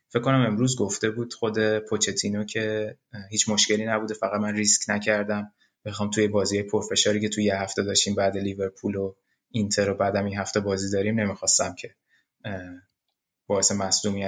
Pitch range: 100-110 Hz